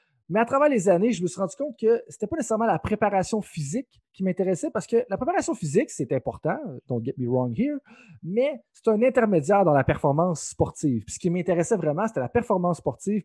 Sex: male